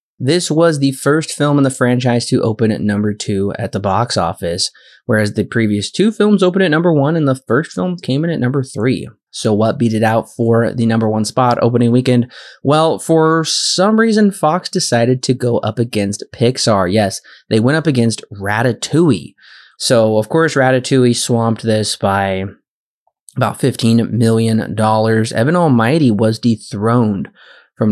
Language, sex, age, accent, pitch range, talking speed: English, male, 20-39, American, 110-140 Hz, 170 wpm